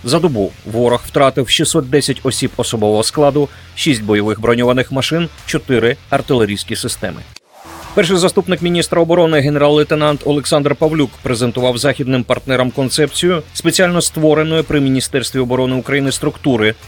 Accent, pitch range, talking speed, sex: native, 115-145 Hz, 115 wpm, male